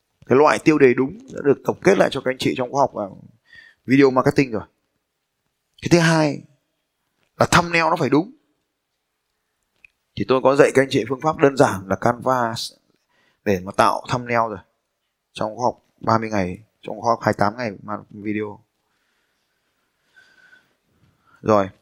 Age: 20-39